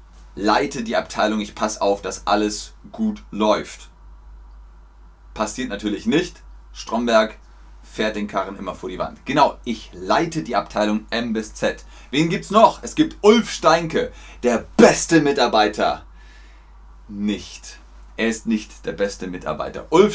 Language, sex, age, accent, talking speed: German, male, 30-49, German, 145 wpm